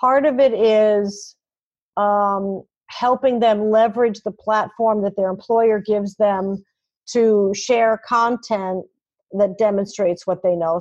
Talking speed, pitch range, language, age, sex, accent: 130 wpm, 195-245 Hz, English, 50-69, female, American